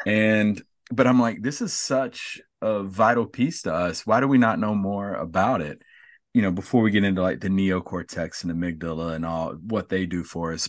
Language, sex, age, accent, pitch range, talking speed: English, male, 30-49, American, 90-100 Hz, 215 wpm